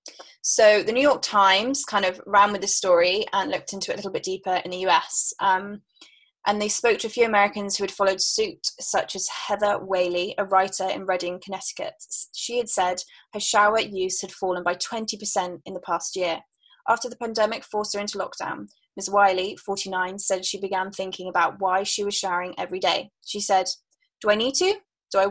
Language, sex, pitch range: English, female, 185-235 Hz